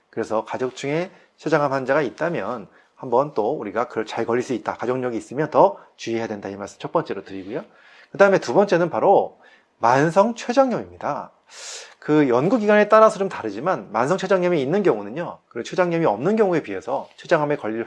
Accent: native